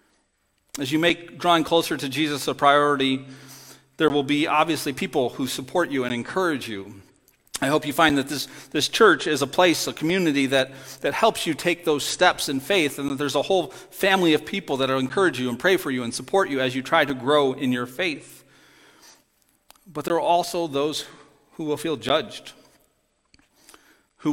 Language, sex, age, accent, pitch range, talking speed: English, male, 40-59, American, 130-165 Hz, 195 wpm